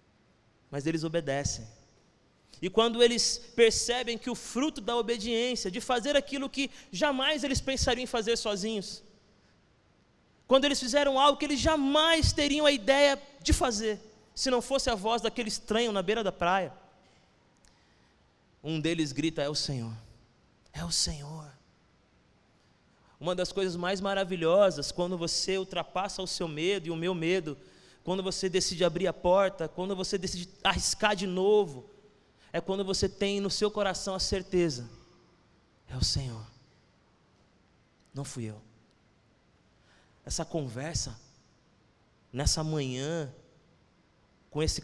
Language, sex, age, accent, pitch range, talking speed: Portuguese, male, 20-39, Brazilian, 145-225 Hz, 135 wpm